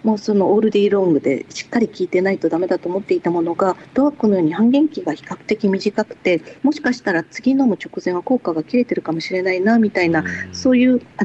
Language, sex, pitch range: Japanese, female, 180-235 Hz